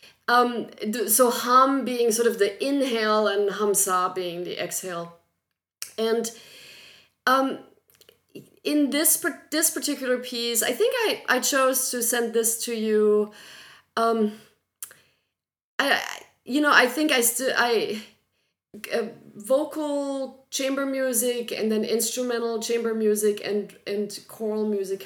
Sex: female